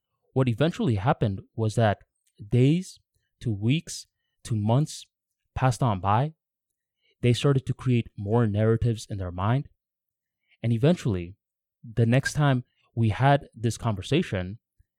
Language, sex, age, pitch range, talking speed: English, male, 20-39, 105-130 Hz, 125 wpm